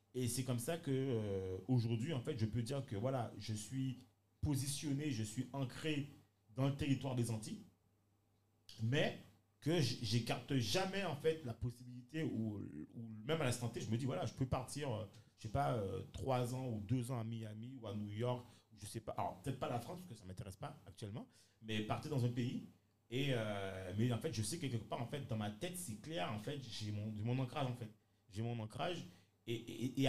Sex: male